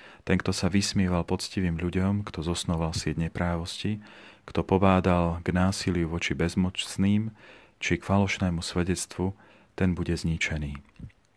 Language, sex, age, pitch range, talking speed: Slovak, male, 40-59, 90-105 Hz, 120 wpm